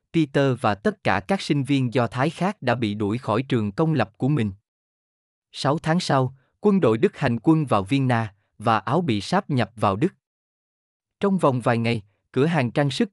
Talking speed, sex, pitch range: 205 wpm, male, 115-155 Hz